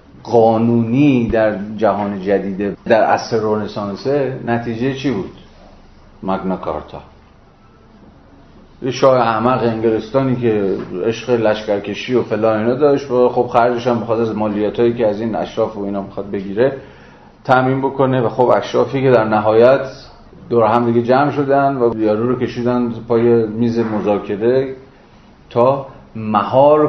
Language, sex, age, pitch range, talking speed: Persian, male, 40-59, 100-125 Hz, 135 wpm